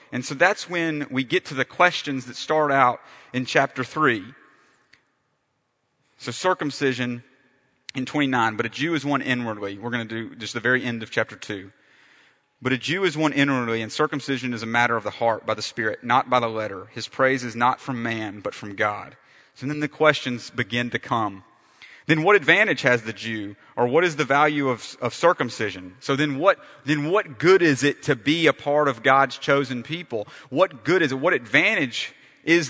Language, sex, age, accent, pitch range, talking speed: English, male, 30-49, American, 120-150 Hz, 200 wpm